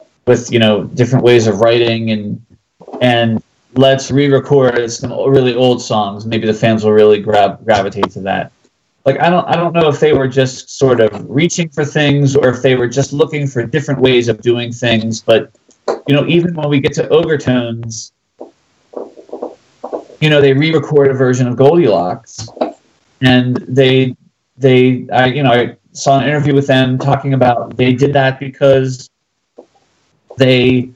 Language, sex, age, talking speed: English, male, 30-49, 170 wpm